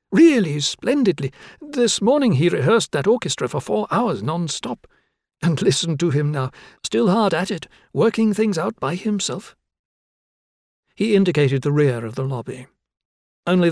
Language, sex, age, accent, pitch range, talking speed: English, male, 60-79, British, 135-185 Hz, 150 wpm